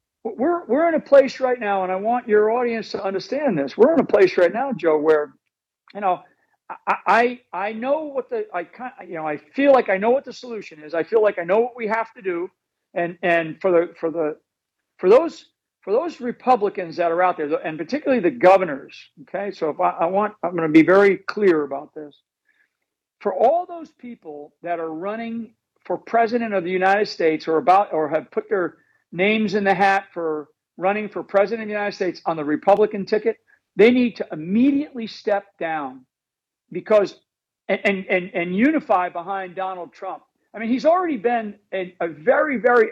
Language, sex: English, male